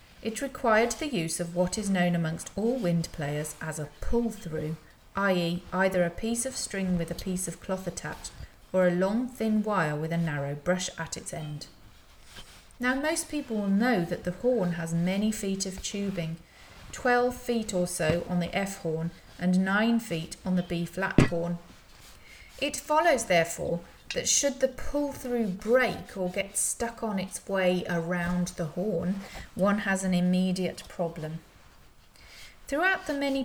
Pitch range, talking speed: 170-220 Hz, 165 wpm